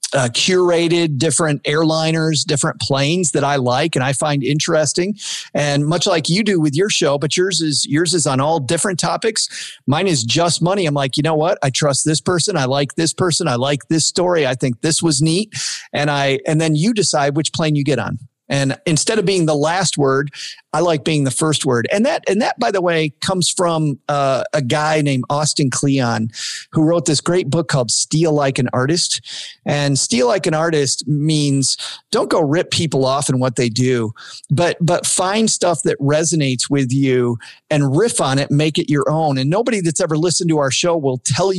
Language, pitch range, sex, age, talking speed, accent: English, 135-170 Hz, male, 40-59, 210 wpm, American